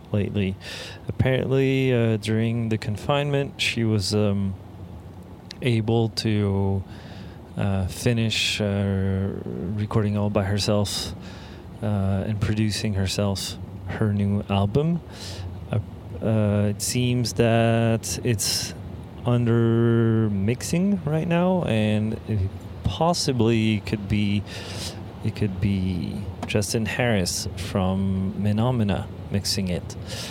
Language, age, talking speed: English, 30-49, 95 wpm